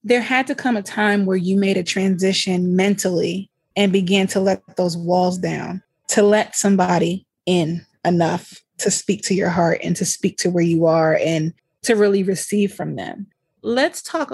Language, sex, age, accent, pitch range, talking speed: English, female, 20-39, American, 175-210 Hz, 185 wpm